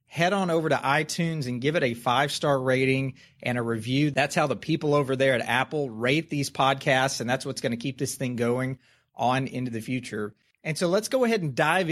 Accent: American